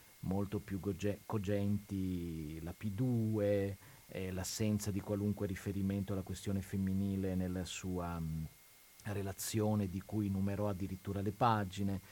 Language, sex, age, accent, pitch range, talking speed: Italian, male, 40-59, native, 95-115 Hz, 120 wpm